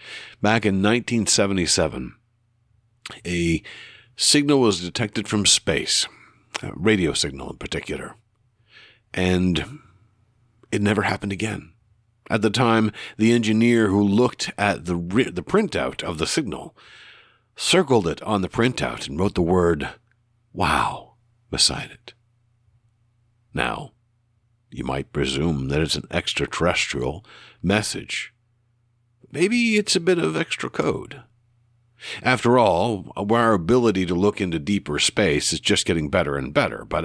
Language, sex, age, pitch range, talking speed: English, male, 60-79, 95-120 Hz, 125 wpm